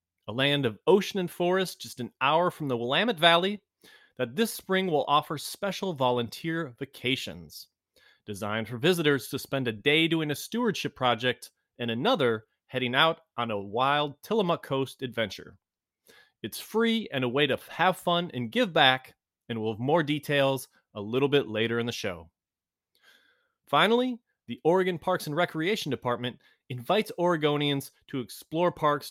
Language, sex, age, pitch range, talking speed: English, male, 30-49, 120-175 Hz, 160 wpm